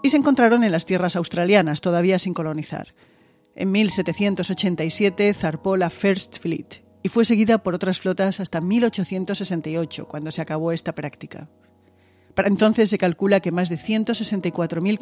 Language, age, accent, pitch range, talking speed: Spanish, 40-59, Spanish, 165-195 Hz, 150 wpm